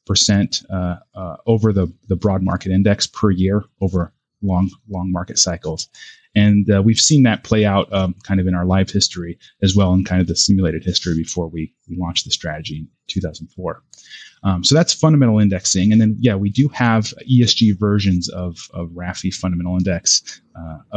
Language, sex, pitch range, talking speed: English, male, 90-110 Hz, 185 wpm